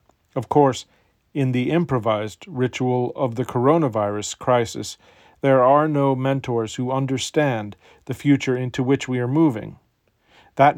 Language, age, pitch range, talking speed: English, 40-59, 115-140 Hz, 135 wpm